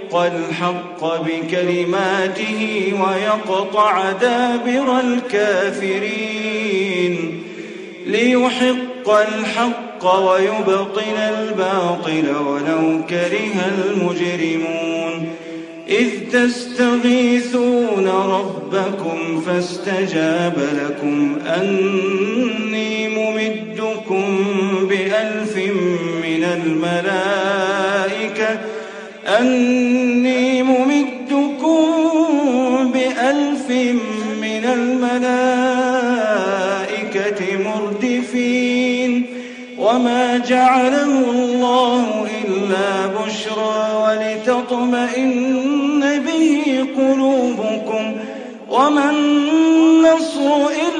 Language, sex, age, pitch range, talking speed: Arabic, male, 40-59, 190-250 Hz, 45 wpm